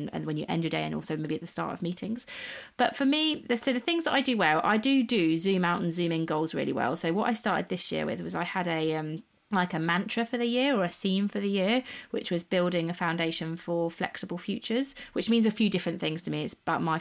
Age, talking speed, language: 30-49, 275 wpm, English